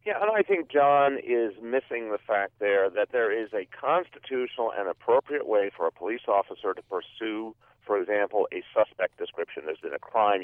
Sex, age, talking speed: male, 40-59, 190 wpm